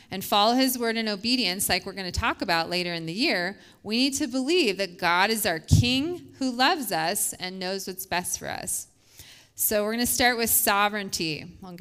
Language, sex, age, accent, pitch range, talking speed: English, female, 30-49, American, 190-250 Hz, 215 wpm